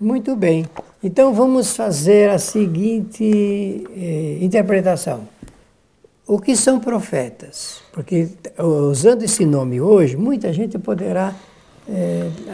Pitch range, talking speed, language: 160-215 Hz, 105 wpm, Portuguese